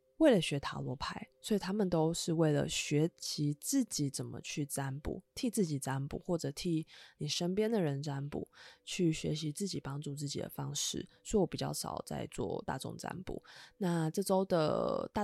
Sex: female